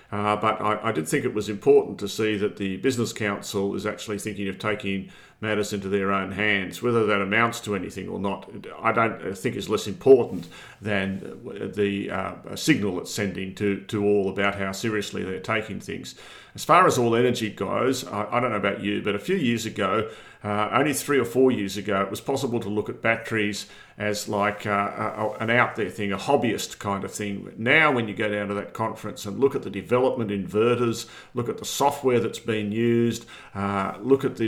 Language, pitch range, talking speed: English, 100-120 Hz, 210 wpm